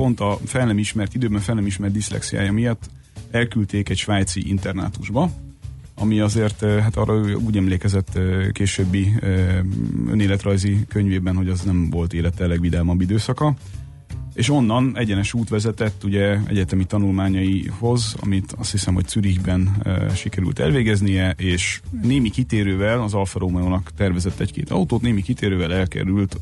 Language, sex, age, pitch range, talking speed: Hungarian, male, 30-49, 90-110 Hz, 130 wpm